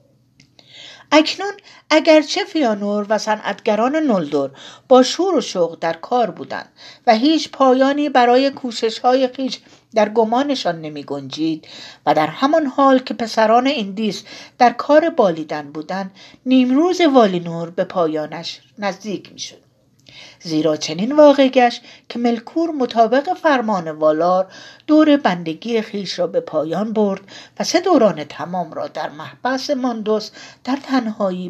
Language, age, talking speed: Persian, 60-79, 125 wpm